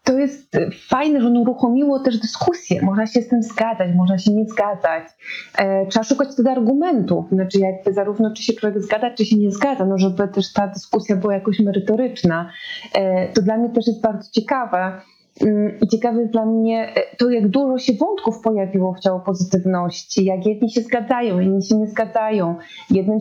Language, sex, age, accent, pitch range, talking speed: Polish, female, 30-49, native, 205-245 Hz, 185 wpm